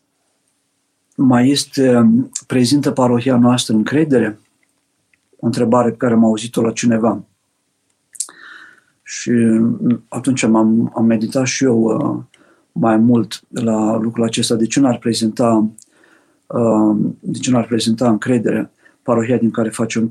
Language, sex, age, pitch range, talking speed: Romanian, male, 50-69, 115-130 Hz, 115 wpm